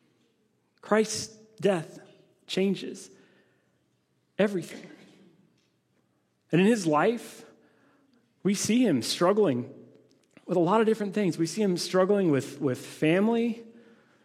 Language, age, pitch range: English, 30-49, 135-175 Hz